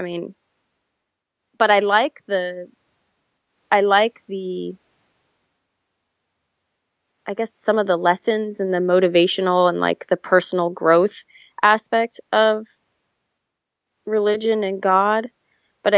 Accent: American